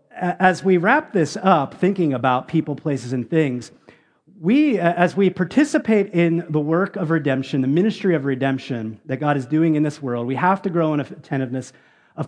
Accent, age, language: American, 40-59, English